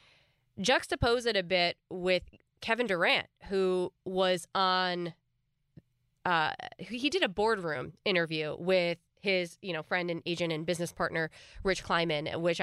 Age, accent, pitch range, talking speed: 20-39, American, 160-200 Hz, 140 wpm